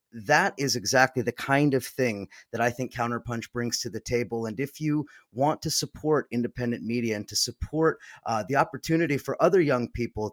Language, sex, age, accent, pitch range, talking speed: English, male, 30-49, American, 110-135 Hz, 190 wpm